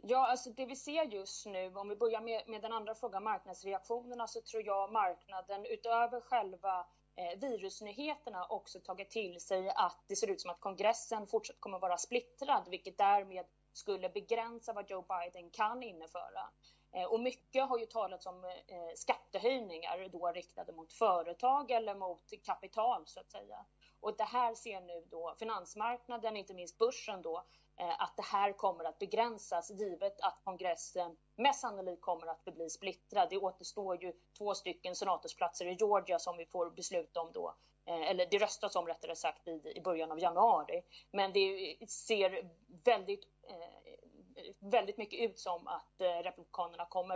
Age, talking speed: 30-49, 160 wpm